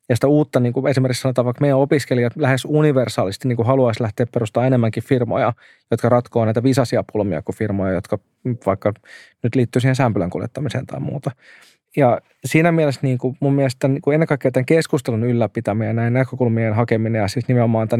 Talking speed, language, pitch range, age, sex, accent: 170 wpm, Finnish, 115-135 Hz, 20-39, male, native